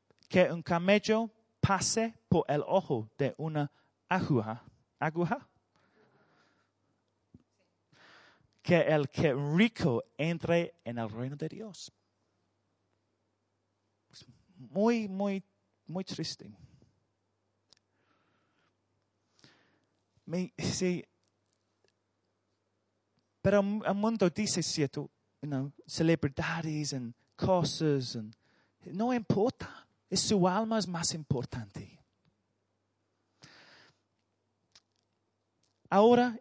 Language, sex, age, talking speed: Spanish, male, 30-49, 75 wpm